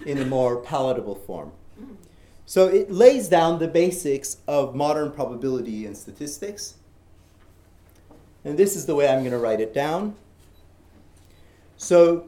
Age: 40-59